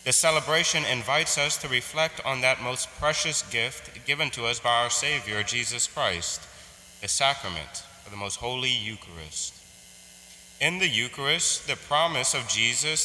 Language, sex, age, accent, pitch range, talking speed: English, male, 30-49, American, 105-140 Hz, 150 wpm